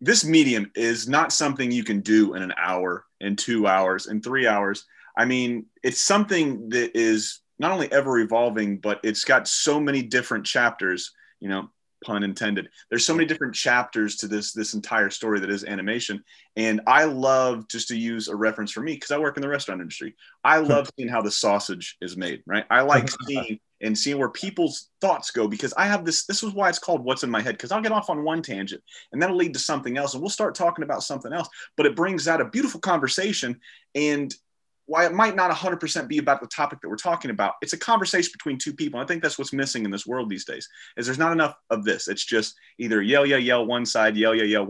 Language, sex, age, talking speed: English, male, 30-49, 230 wpm